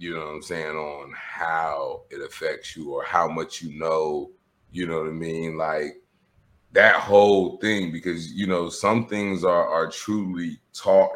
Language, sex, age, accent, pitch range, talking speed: English, male, 30-49, American, 85-100 Hz, 175 wpm